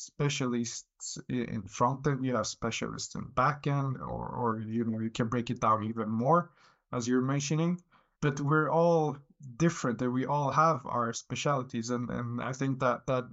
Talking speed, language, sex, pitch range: 170 wpm, English, male, 125-145 Hz